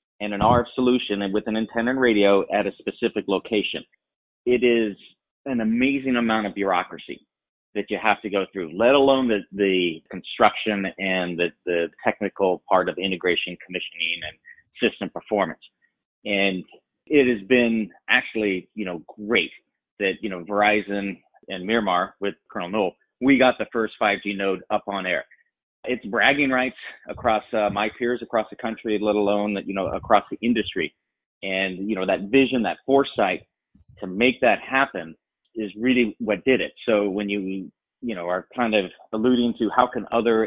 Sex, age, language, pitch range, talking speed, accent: male, 30-49, English, 100-120 Hz, 170 wpm, American